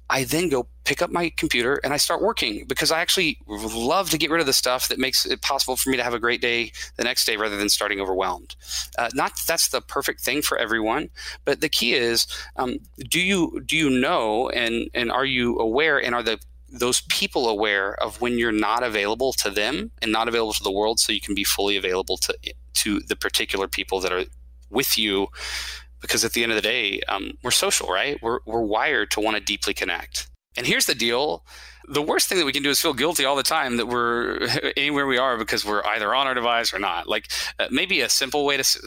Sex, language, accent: male, English, American